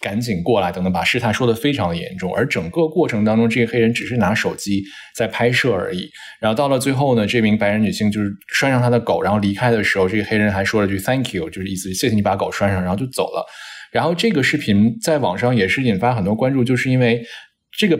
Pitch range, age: 100-130 Hz, 20-39